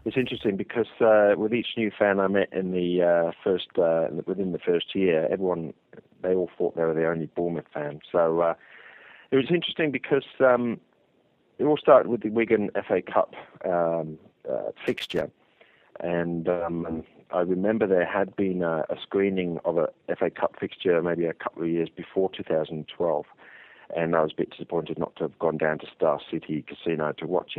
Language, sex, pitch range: English, male, 80-95 Hz